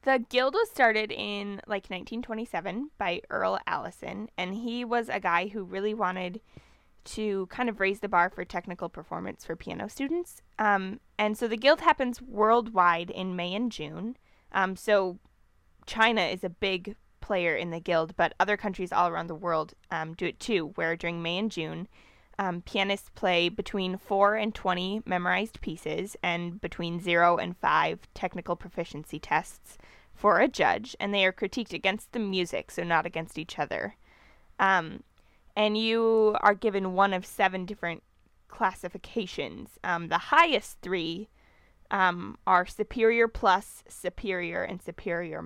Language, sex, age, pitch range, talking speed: English, female, 10-29, 175-220 Hz, 160 wpm